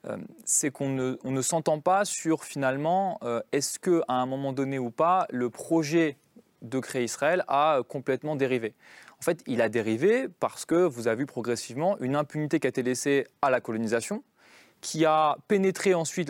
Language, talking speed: French, 180 wpm